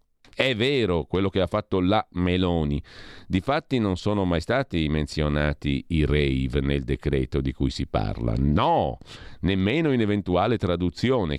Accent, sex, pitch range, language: native, male, 80-105 Hz, Italian